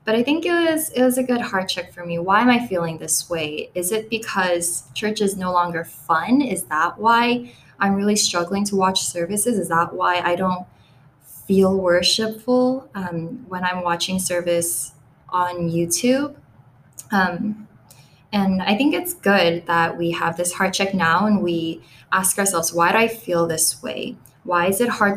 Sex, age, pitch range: female, 10-29, 165-200 Hz